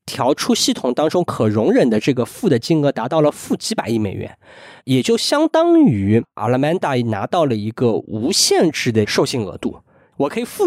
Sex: male